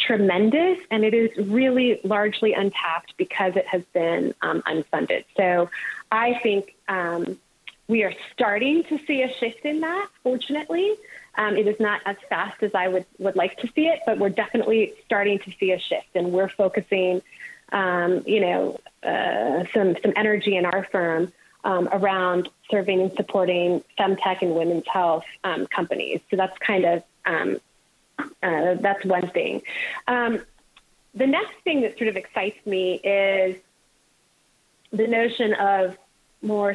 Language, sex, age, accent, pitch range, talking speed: English, female, 20-39, American, 185-230 Hz, 155 wpm